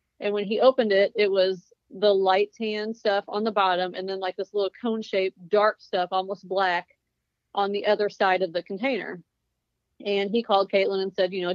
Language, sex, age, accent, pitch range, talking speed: English, female, 30-49, American, 185-210 Hz, 205 wpm